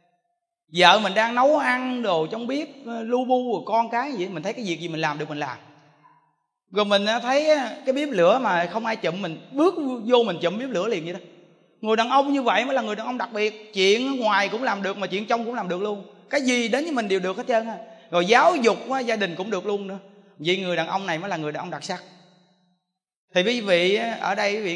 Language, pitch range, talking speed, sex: Vietnamese, 180-240 Hz, 250 wpm, male